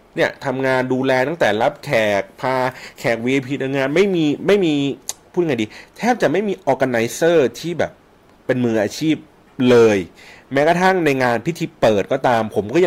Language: Thai